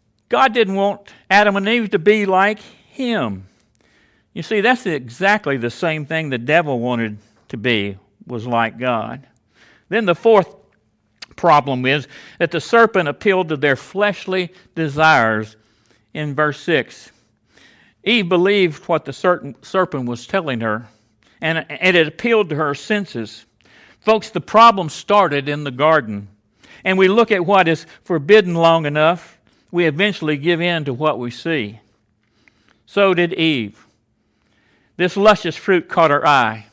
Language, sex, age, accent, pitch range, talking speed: English, male, 60-79, American, 140-195 Hz, 145 wpm